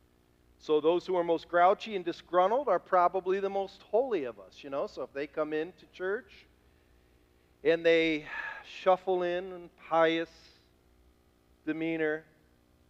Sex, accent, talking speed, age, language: male, American, 140 wpm, 50-69, English